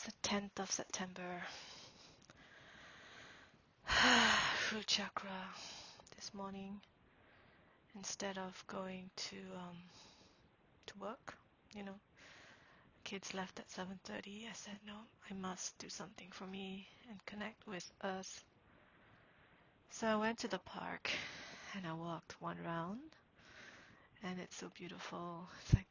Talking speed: 115 wpm